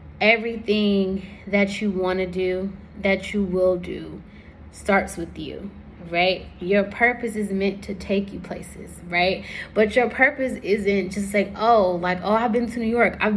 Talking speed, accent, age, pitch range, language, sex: 170 wpm, American, 20-39, 185-215 Hz, English, female